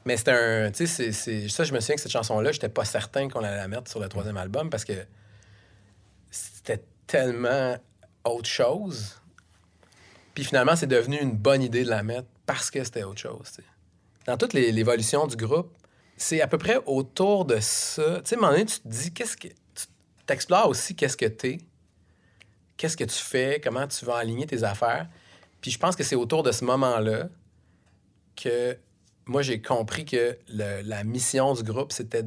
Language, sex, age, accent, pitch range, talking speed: French, male, 30-49, Canadian, 100-125 Hz, 195 wpm